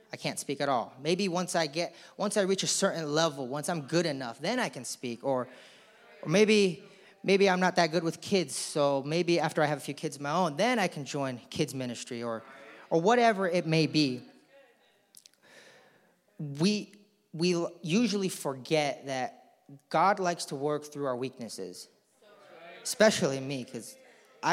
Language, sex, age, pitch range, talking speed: English, male, 30-49, 140-190 Hz, 175 wpm